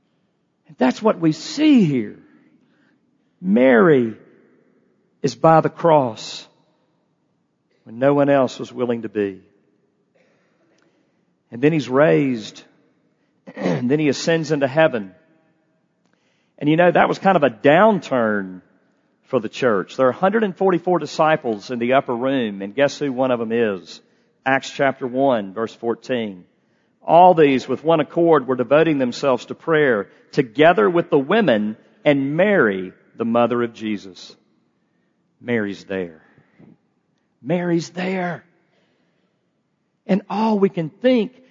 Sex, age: male, 50-69